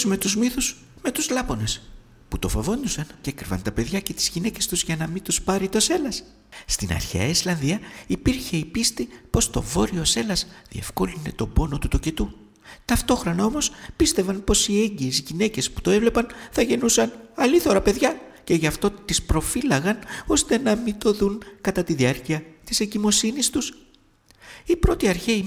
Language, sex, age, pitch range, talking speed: Greek, male, 60-79, 160-230 Hz, 170 wpm